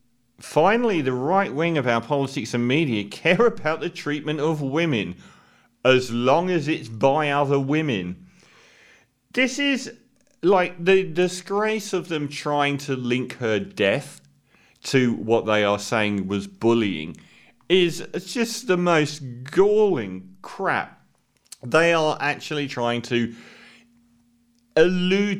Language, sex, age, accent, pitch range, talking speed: English, male, 40-59, British, 120-170 Hz, 125 wpm